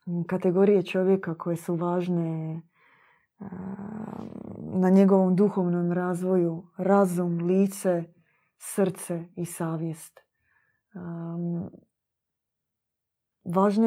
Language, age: Croatian, 20-39